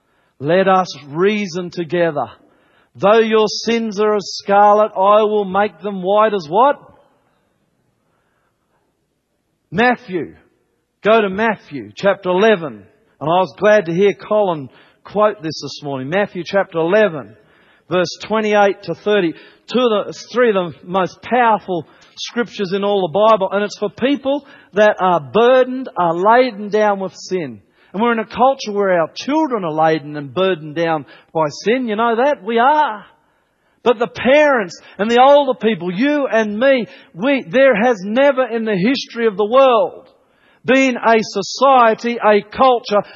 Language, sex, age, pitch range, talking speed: English, male, 50-69, 185-240 Hz, 155 wpm